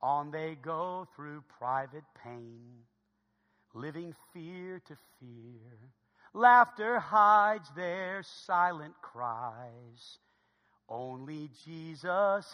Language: English